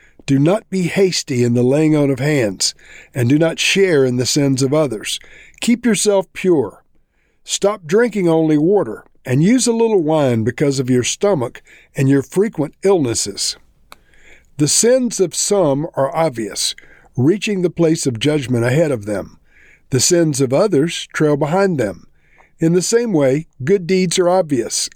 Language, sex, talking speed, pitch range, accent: English, male, 165 wpm, 120-165 Hz, American